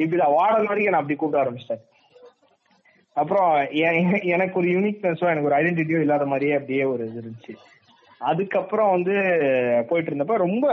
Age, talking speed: 20-39, 130 wpm